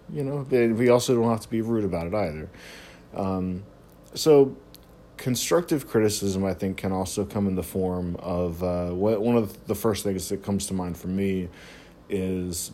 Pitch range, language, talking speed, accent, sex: 90-110 Hz, English, 180 wpm, American, male